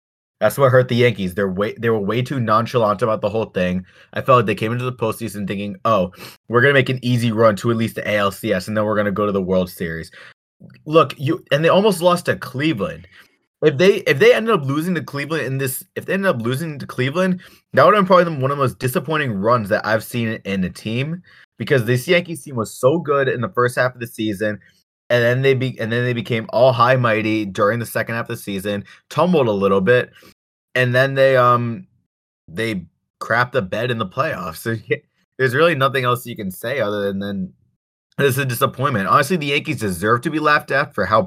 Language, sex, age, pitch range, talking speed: English, male, 20-39, 105-140 Hz, 235 wpm